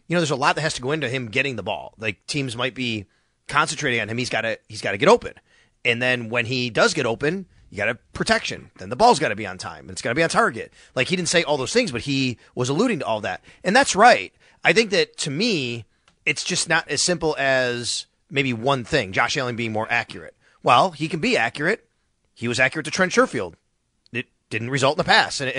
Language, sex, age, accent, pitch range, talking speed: English, male, 30-49, American, 120-160 Hz, 255 wpm